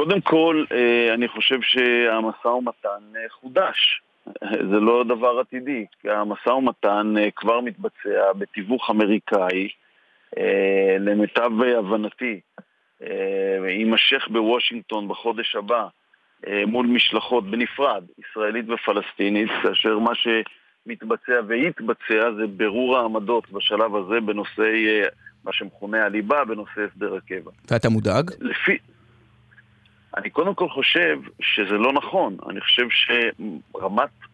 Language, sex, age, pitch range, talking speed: Hebrew, male, 40-59, 105-130 Hz, 100 wpm